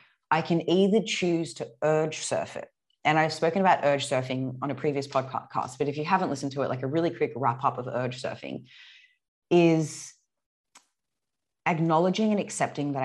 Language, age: English, 30-49